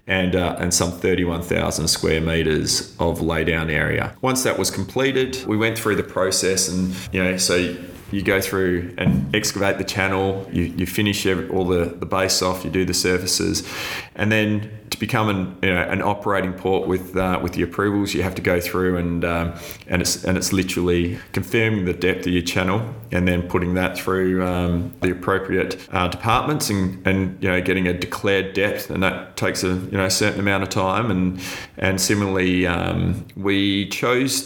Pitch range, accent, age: 90-100 Hz, Australian, 20-39